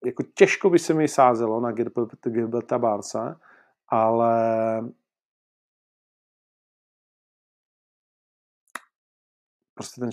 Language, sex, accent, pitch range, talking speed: Czech, male, native, 110-130 Hz, 70 wpm